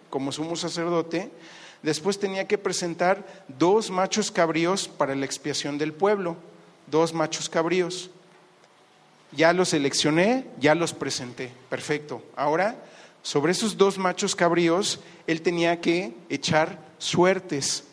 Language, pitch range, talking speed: Spanish, 155-185 Hz, 120 wpm